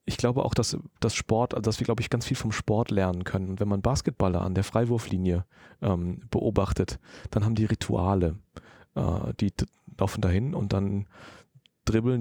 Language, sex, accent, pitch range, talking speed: German, male, German, 95-110 Hz, 185 wpm